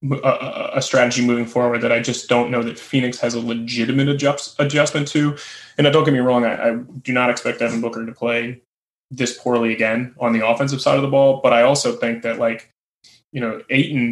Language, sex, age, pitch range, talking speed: English, male, 20-39, 115-130 Hz, 215 wpm